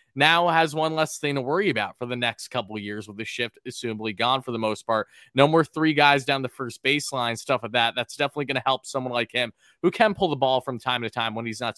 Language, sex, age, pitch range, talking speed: English, male, 20-39, 120-150 Hz, 280 wpm